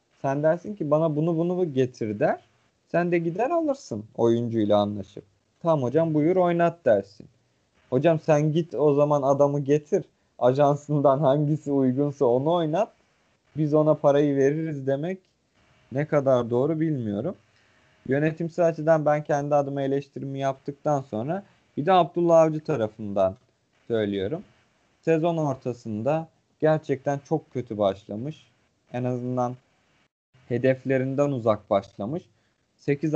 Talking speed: 120 wpm